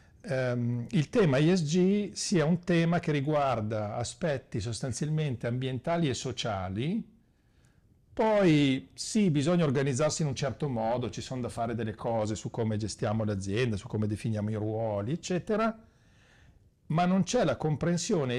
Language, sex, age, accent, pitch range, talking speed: Italian, male, 50-69, native, 110-160 Hz, 140 wpm